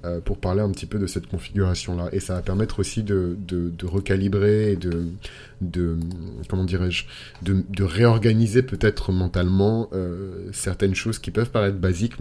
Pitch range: 90-105 Hz